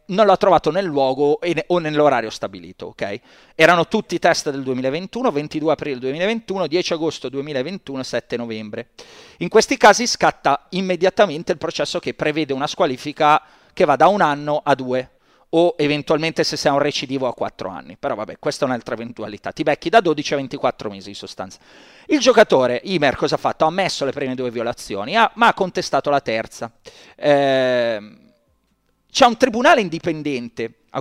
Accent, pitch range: native, 135-185 Hz